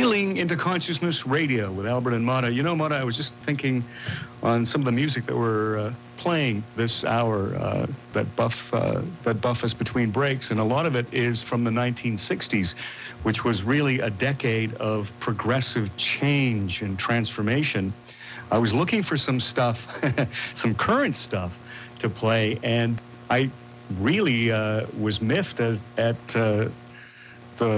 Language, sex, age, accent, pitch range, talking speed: English, male, 50-69, American, 110-135 Hz, 160 wpm